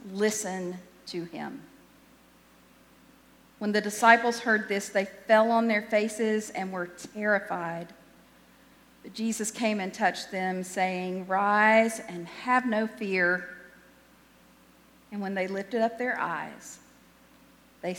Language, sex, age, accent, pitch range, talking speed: English, female, 50-69, American, 195-235 Hz, 120 wpm